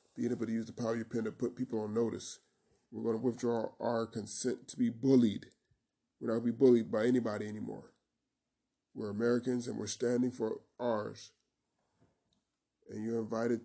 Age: 20-39